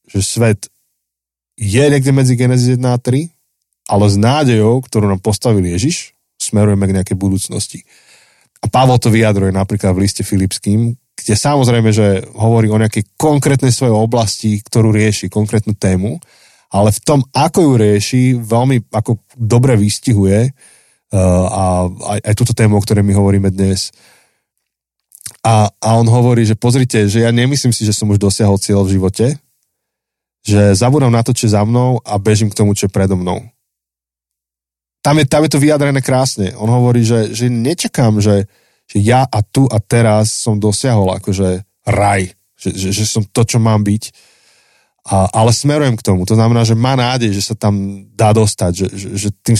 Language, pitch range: Slovak, 100-120 Hz